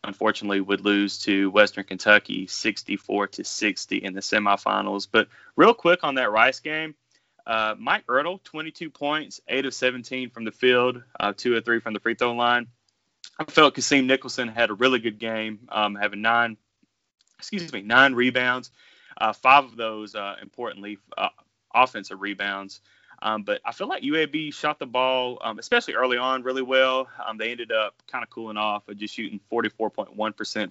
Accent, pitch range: American, 105-130 Hz